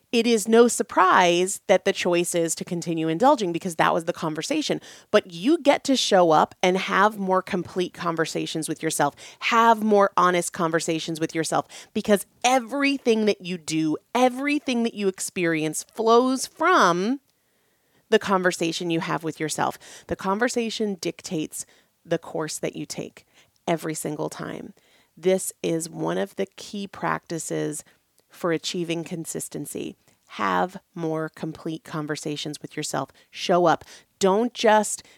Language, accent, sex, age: English, American, female, 30-49